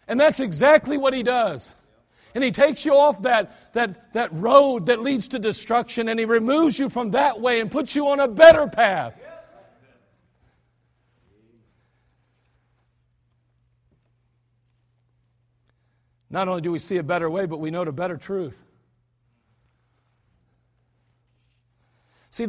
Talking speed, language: 130 wpm, English